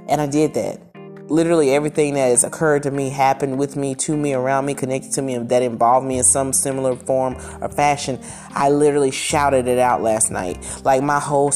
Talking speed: 215 wpm